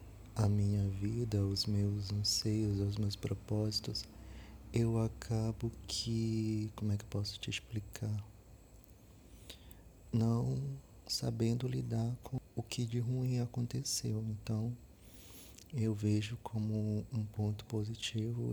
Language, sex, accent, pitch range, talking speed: Portuguese, male, Brazilian, 105-115 Hz, 115 wpm